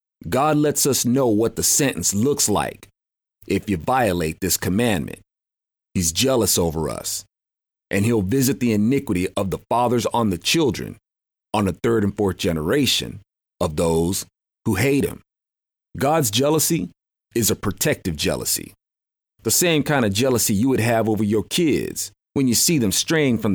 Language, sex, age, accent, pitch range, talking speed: English, male, 40-59, American, 100-145 Hz, 160 wpm